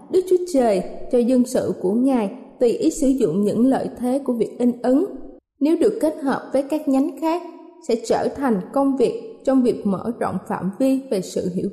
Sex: female